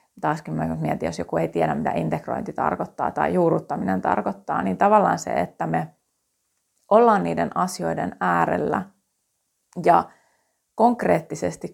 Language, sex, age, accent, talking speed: Finnish, female, 30-49, native, 125 wpm